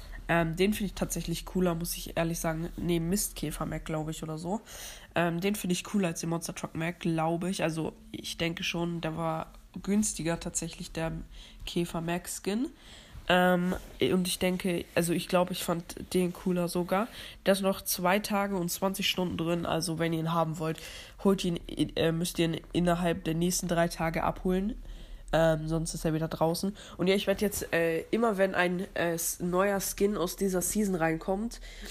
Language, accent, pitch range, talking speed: German, German, 160-185 Hz, 185 wpm